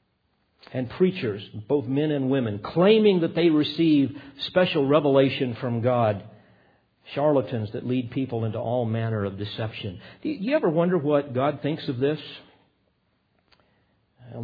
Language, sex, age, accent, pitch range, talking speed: English, male, 50-69, American, 110-140 Hz, 135 wpm